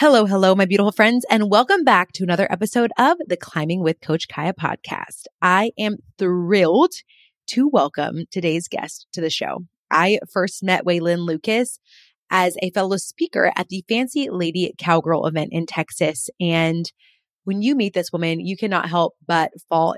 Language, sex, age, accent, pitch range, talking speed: English, female, 20-39, American, 170-220 Hz, 170 wpm